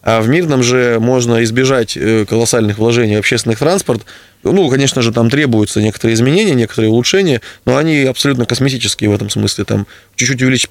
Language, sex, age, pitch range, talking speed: Russian, male, 20-39, 105-125 Hz, 170 wpm